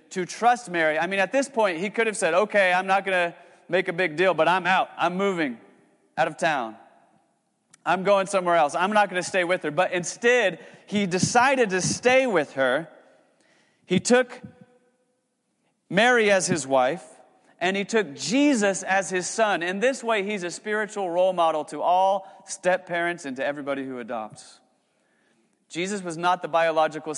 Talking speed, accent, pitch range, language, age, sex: 180 wpm, American, 155-195 Hz, English, 30-49, male